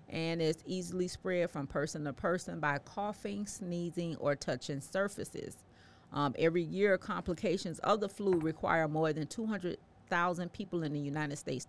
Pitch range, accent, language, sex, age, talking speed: 140-175 Hz, American, English, female, 40-59, 155 wpm